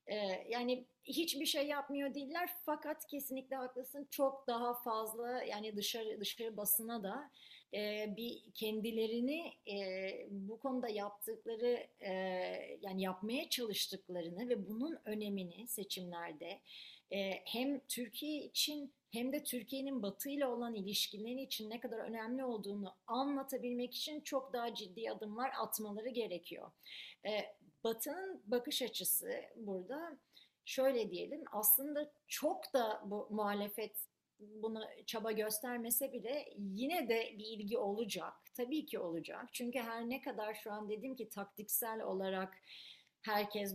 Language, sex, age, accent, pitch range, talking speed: Turkish, female, 40-59, native, 200-255 Hz, 125 wpm